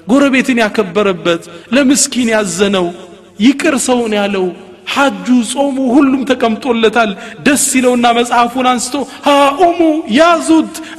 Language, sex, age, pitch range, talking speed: Amharic, male, 30-49, 140-220 Hz, 85 wpm